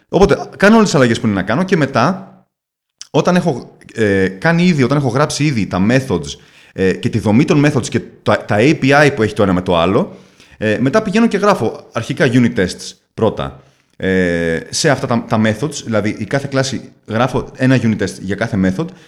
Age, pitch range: 30-49, 105-155 Hz